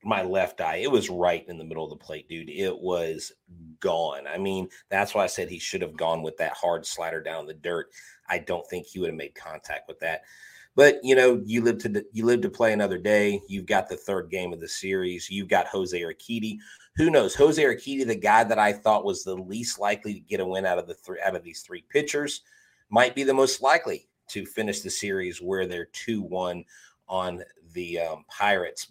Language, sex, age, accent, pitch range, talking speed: English, male, 30-49, American, 95-120 Hz, 230 wpm